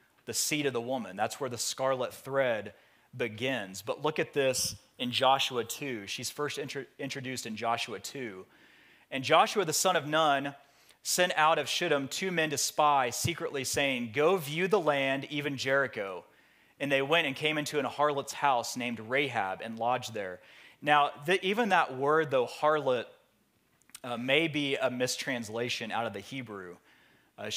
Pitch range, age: 125-150 Hz, 30-49